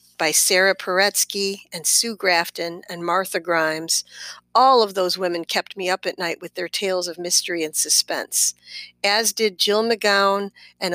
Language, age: English, 50-69